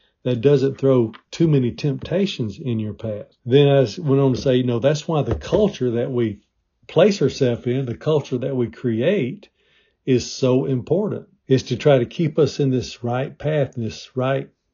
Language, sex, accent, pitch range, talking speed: English, male, American, 120-145 Hz, 190 wpm